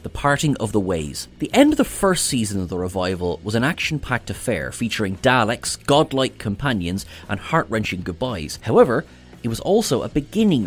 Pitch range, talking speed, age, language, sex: 95-130 Hz, 185 wpm, 30-49, English, male